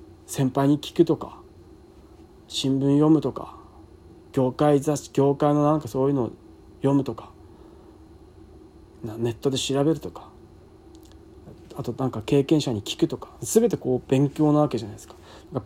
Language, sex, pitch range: Japanese, male, 120-175 Hz